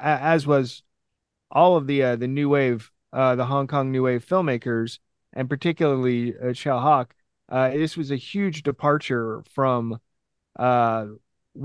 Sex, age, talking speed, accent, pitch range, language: male, 30-49, 145 wpm, American, 120-150 Hz, English